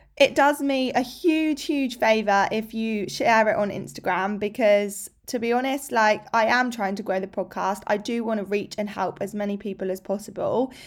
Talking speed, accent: 205 wpm, British